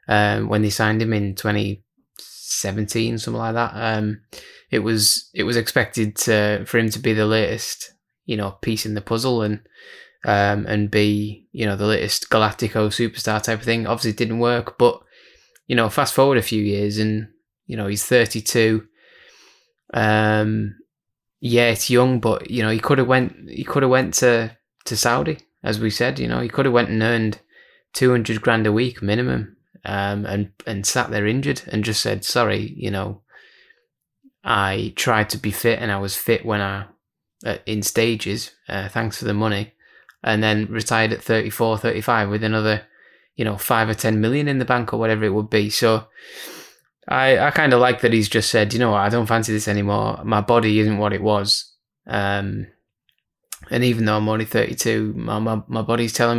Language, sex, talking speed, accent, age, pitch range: English, male, 195 wpm, British, 20-39, 105-120 Hz